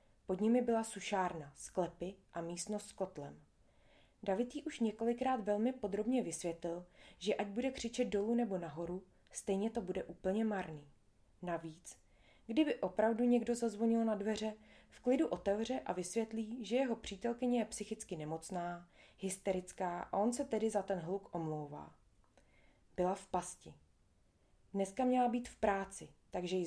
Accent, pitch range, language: native, 175-220 Hz, Czech